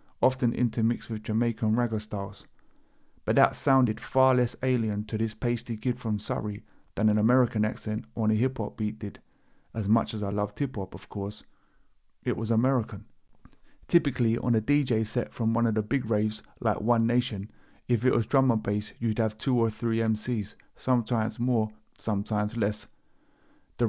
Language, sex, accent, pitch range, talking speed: English, male, British, 110-125 Hz, 170 wpm